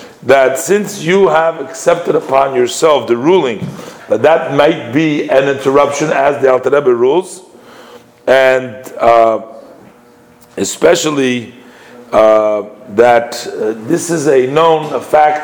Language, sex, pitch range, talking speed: English, male, 125-160 Hz, 125 wpm